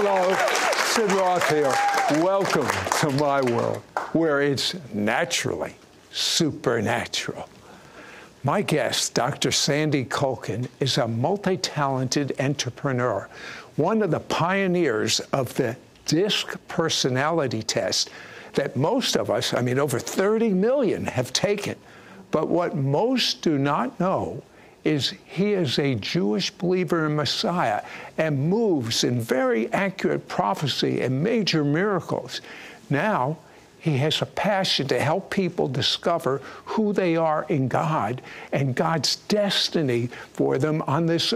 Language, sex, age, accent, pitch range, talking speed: English, male, 60-79, American, 140-200 Hz, 125 wpm